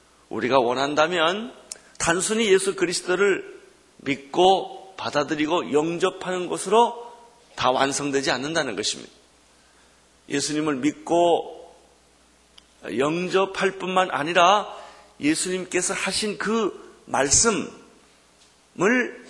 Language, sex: Korean, male